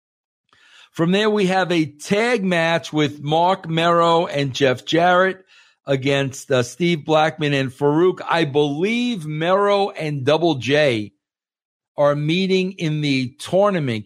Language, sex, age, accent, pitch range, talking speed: English, male, 50-69, American, 120-155 Hz, 130 wpm